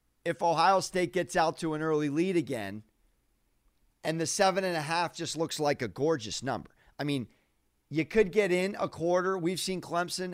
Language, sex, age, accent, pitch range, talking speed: English, male, 40-59, American, 145-190 Hz, 175 wpm